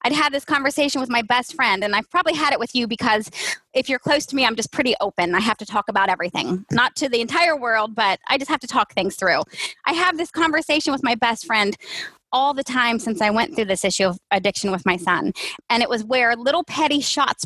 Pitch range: 215-285 Hz